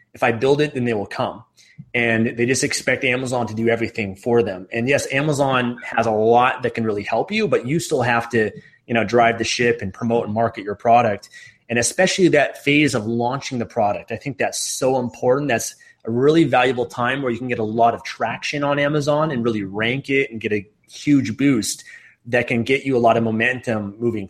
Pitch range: 115-135 Hz